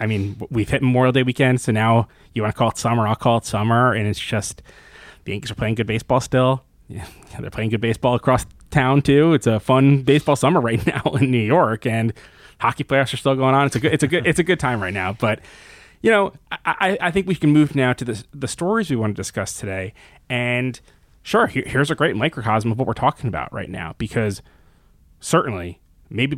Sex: male